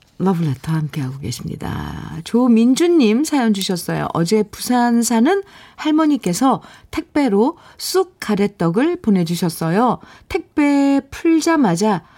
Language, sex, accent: Korean, female, native